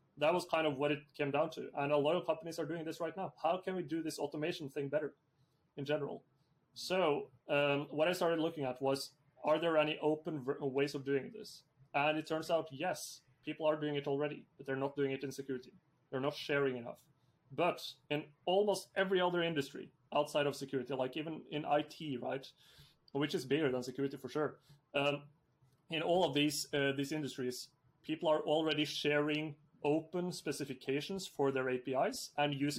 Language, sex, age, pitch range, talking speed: English, male, 30-49, 140-160 Hz, 195 wpm